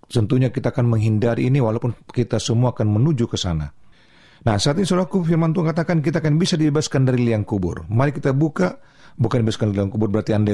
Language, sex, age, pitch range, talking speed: Indonesian, male, 40-59, 115-165 Hz, 205 wpm